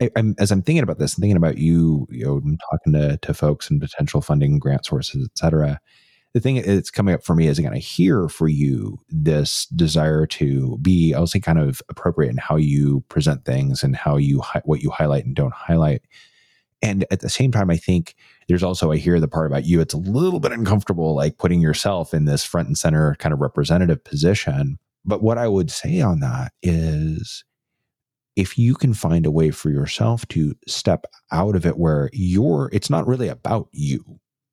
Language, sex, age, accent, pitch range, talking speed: English, male, 30-49, American, 75-105 Hz, 210 wpm